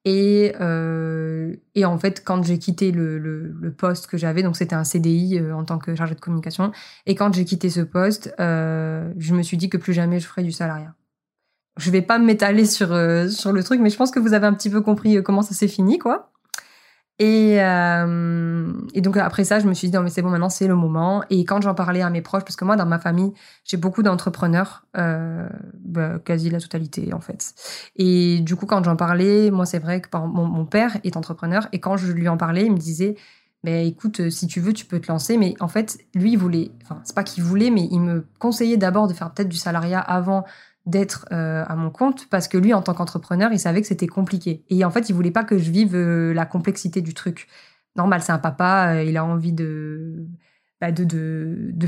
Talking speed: 240 wpm